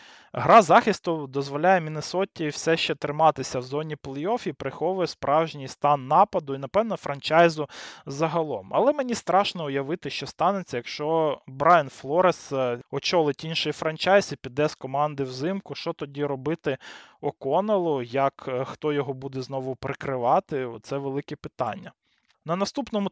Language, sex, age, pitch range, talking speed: Ukrainian, male, 20-39, 135-170 Hz, 130 wpm